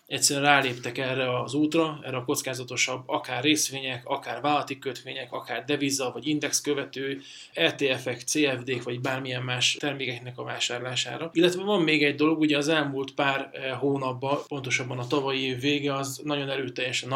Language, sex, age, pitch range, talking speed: Hungarian, male, 20-39, 130-145 Hz, 155 wpm